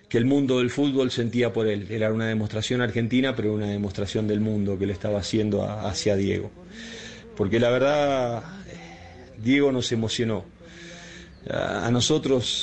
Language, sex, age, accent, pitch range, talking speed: Spanish, male, 40-59, Argentinian, 110-135 Hz, 150 wpm